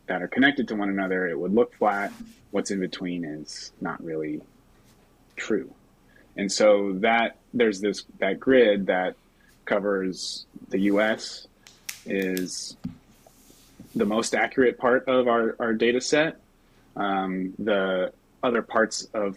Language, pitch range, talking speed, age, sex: English, 95-115 Hz, 135 wpm, 30-49, male